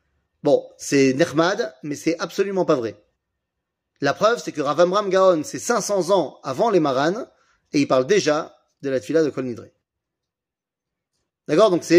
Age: 30-49